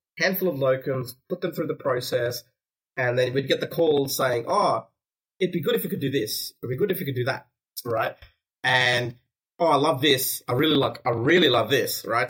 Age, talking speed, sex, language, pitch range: 30-49, 225 wpm, male, English, 125-155 Hz